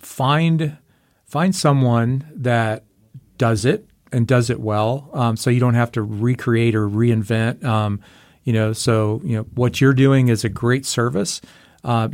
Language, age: English, 40-59